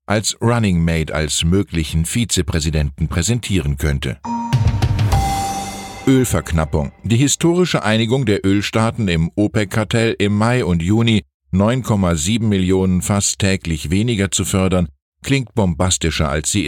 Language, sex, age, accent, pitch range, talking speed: German, male, 50-69, German, 85-115 Hz, 110 wpm